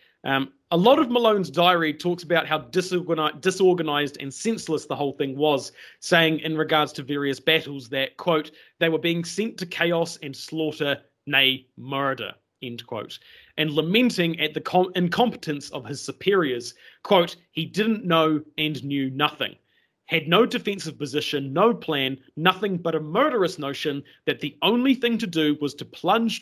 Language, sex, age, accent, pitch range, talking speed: English, male, 30-49, Australian, 140-180 Hz, 160 wpm